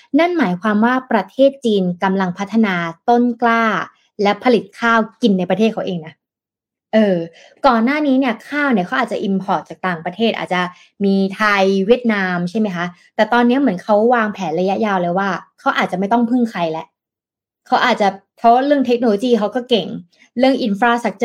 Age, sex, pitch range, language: 20-39, female, 185-240 Hz, Thai